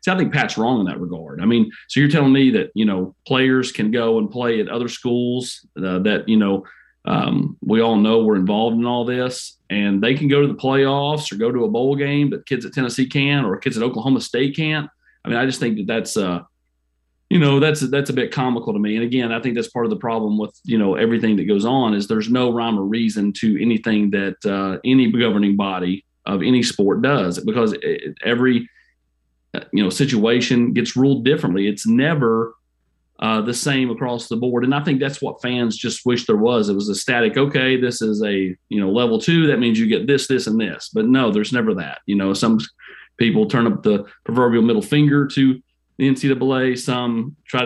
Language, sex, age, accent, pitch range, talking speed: English, male, 30-49, American, 110-135 Hz, 225 wpm